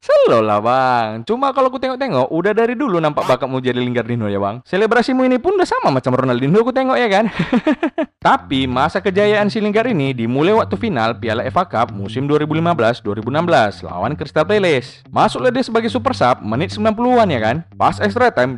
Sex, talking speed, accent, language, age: male, 180 wpm, native, Indonesian, 20-39